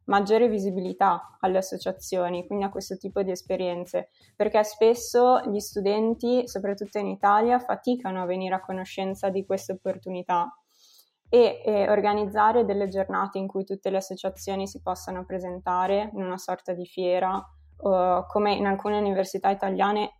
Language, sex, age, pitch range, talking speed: Italian, female, 20-39, 190-210 Hz, 145 wpm